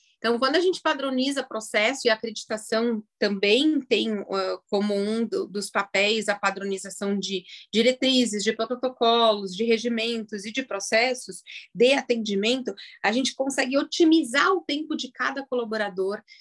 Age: 30-49